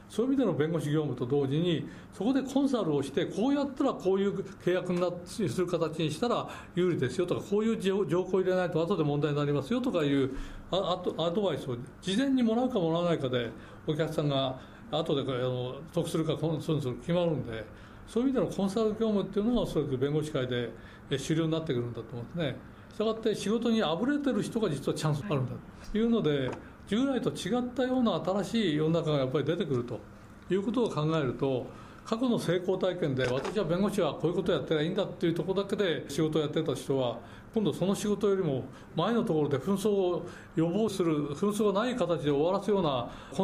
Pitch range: 145-205 Hz